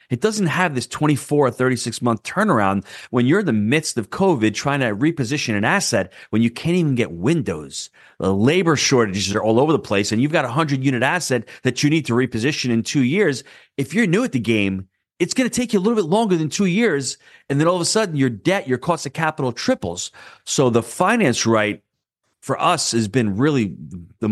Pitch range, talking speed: 100-140 Hz, 225 wpm